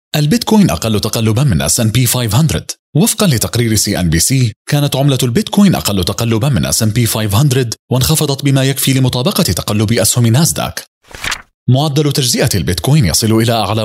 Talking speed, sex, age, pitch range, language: 130 wpm, male, 30-49, 110-140 Hz, Arabic